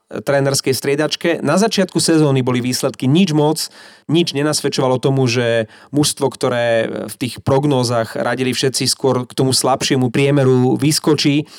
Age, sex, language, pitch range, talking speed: 30-49, male, Slovak, 120-145 Hz, 135 wpm